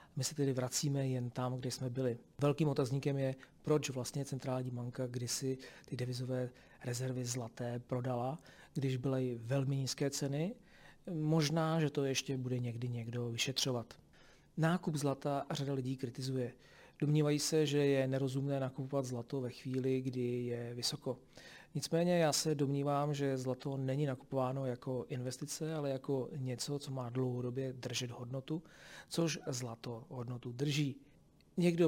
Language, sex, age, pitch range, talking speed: Czech, male, 40-59, 125-145 Hz, 145 wpm